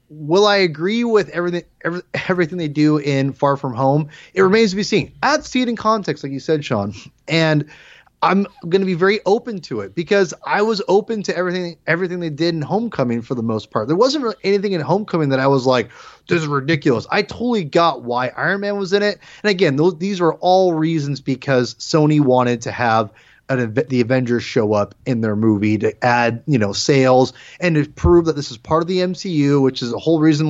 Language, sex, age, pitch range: English, male, 30-49, 135-195 Hz